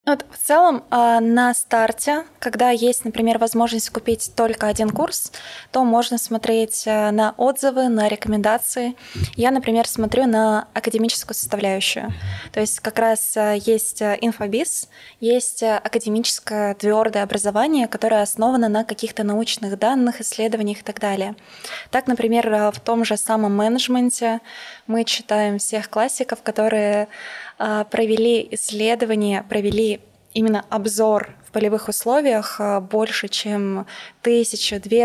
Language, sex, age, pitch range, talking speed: Russian, female, 20-39, 215-235 Hz, 115 wpm